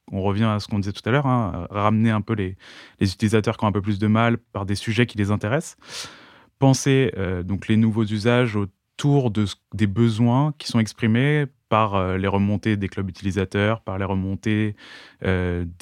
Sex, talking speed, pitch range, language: male, 200 wpm, 100-115 Hz, French